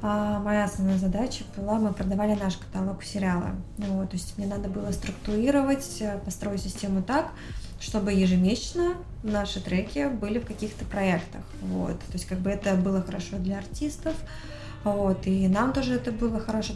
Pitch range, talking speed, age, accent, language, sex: 190-215 Hz, 145 wpm, 20-39, native, Russian, female